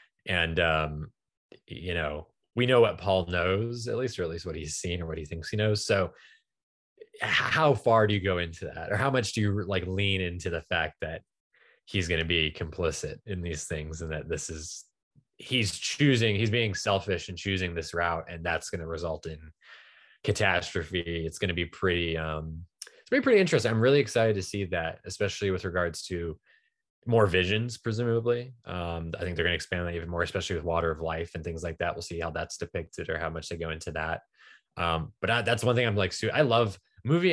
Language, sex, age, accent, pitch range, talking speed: English, male, 20-39, American, 85-110 Hz, 215 wpm